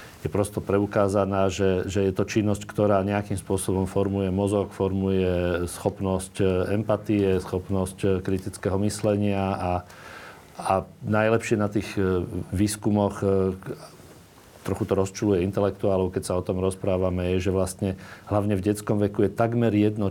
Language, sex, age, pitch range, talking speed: Slovak, male, 40-59, 95-105 Hz, 130 wpm